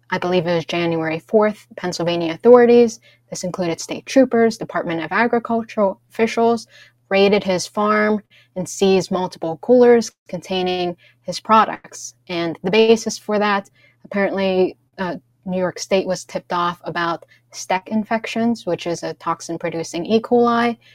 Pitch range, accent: 165-205 Hz, American